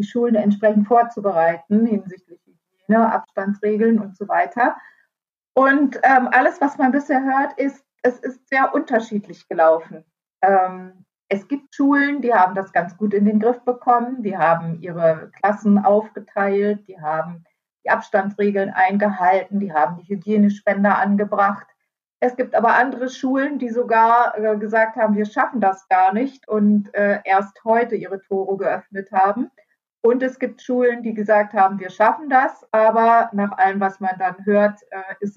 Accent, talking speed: German, 155 wpm